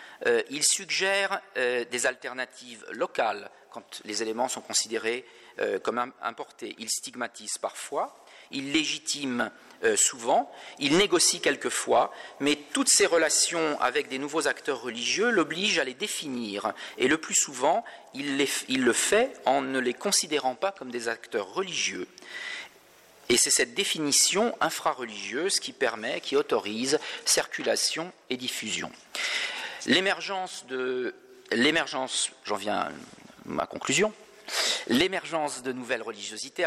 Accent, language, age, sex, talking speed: French, French, 40-59, male, 130 wpm